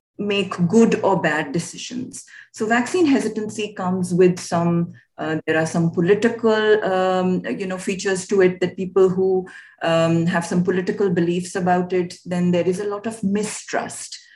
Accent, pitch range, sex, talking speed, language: Indian, 175-215 Hz, female, 165 wpm, English